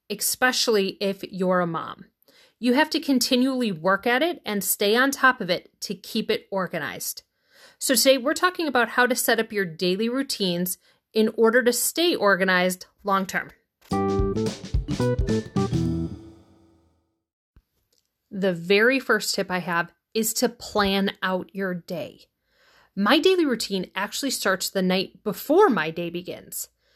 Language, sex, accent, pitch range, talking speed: English, female, American, 180-250 Hz, 140 wpm